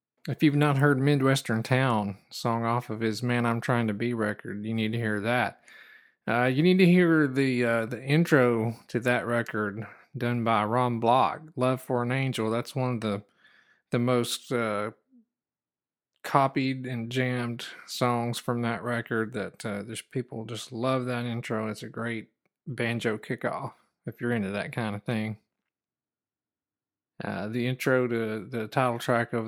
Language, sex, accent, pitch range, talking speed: English, male, American, 110-125 Hz, 170 wpm